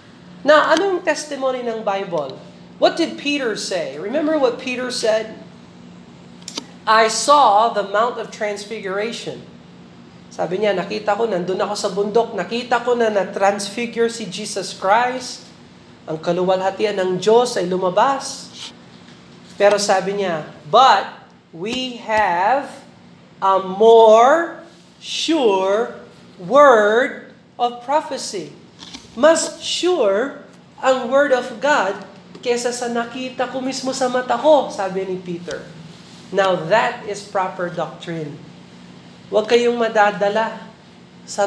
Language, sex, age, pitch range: Filipino, male, 40-59, 190-250 Hz